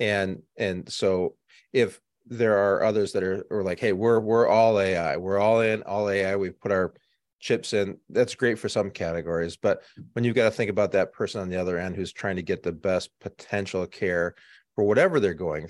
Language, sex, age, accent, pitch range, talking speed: English, male, 30-49, American, 90-115 Hz, 215 wpm